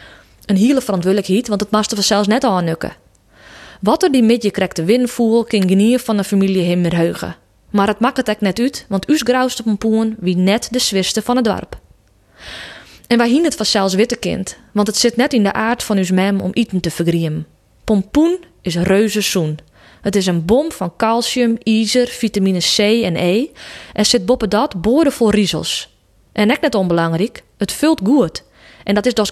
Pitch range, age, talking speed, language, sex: 185-235 Hz, 20-39, 190 wpm, Dutch, female